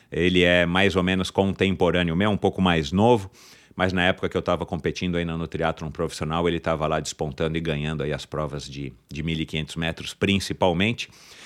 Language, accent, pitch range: Portuguese, Brazilian, 85-105 Hz